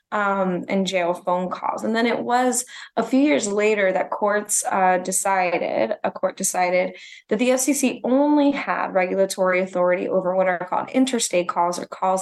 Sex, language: female, English